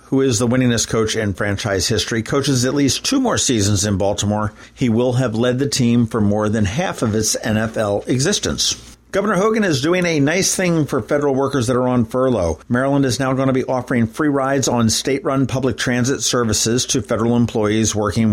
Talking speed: 205 wpm